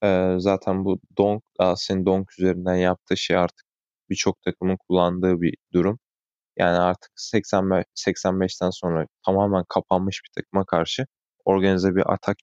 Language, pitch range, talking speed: Turkish, 85-95 Hz, 125 wpm